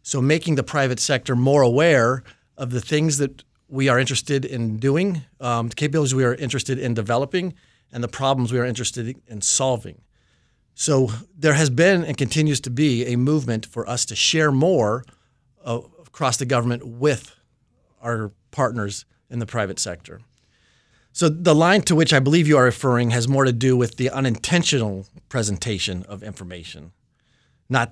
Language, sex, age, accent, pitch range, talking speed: English, male, 30-49, American, 115-140 Hz, 170 wpm